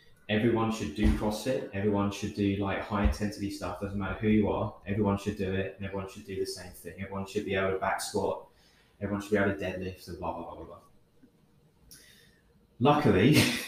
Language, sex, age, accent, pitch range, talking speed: English, male, 20-39, British, 95-105 Hz, 200 wpm